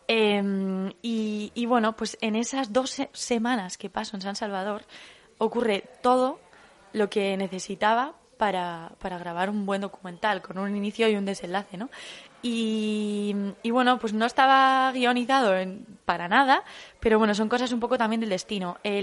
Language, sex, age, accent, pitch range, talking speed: Spanish, female, 20-39, Spanish, 190-220 Hz, 165 wpm